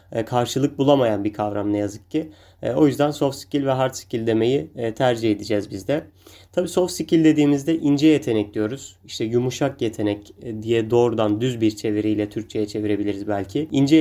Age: 30-49